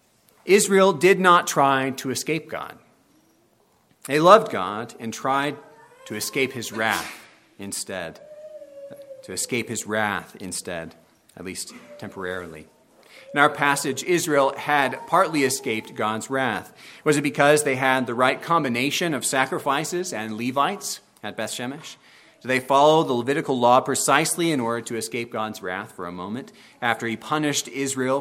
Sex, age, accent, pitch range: male, 40-59, American, 115-155 Hz